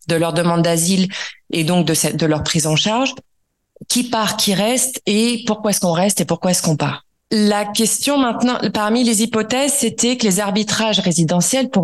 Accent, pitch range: French, 175-230 Hz